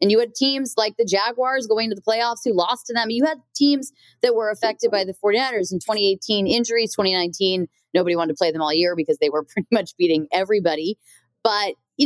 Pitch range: 160-220 Hz